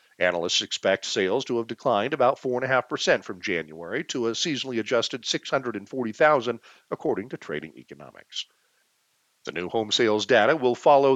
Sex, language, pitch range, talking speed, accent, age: male, English, 115-145 Hz, 140 wpm, American, 50-69